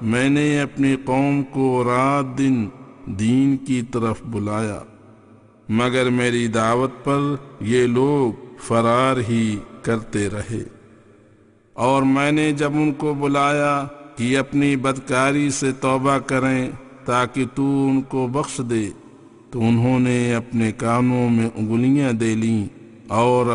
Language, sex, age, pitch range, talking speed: English, male, 50-69, 115-135 Hz, 125 wpm